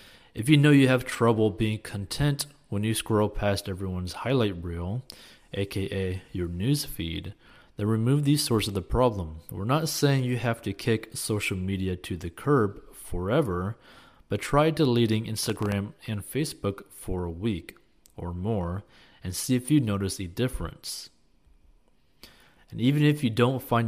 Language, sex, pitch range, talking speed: English, male, 90-115 Hz, 155 wpm